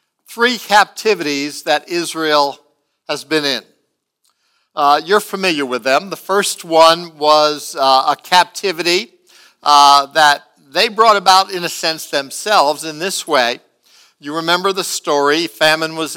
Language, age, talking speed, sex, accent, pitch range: English, 60-79, 135 wpm, male, American, 150-195 Hz